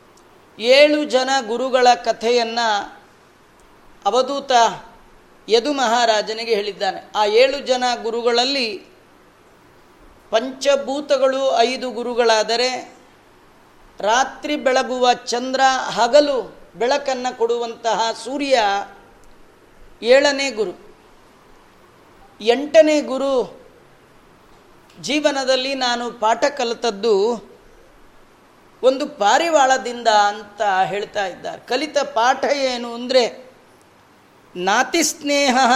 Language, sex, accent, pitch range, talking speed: Kannada, female, native, 235-280 Hz, 65 wpm